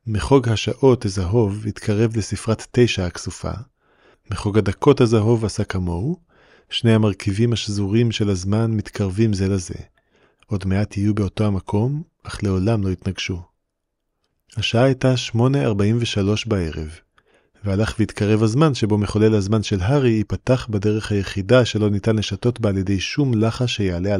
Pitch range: 100-115 Hz